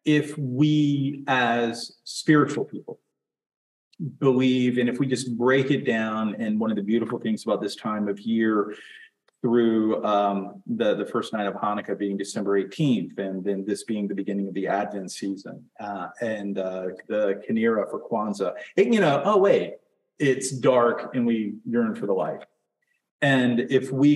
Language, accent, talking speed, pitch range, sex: English, American, 170 wpm, 105-155 Hz, male